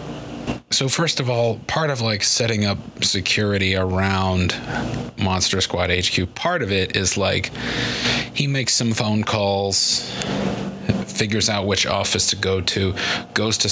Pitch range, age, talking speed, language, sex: 95-125 Hz, 30-49, 145 wpm, English, male